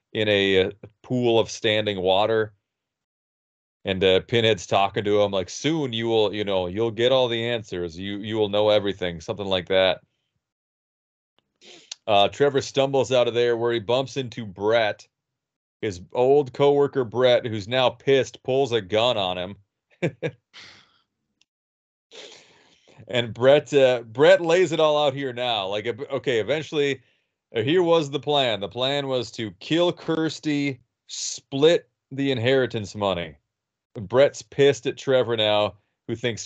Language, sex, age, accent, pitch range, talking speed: English, male, 30-49, American, 105-135 Hz, 145 wpm